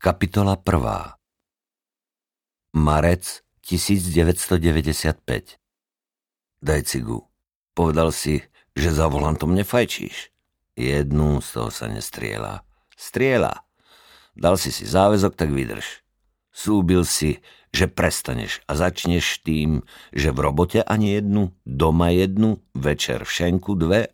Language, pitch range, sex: Slovak, 70-90 Hz, male